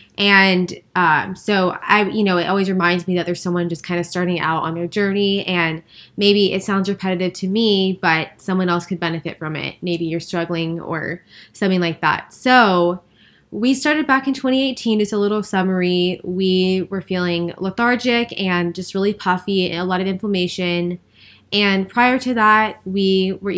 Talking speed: 180 wpm